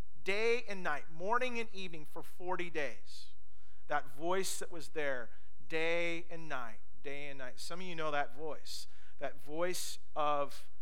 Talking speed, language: 160 wpm, English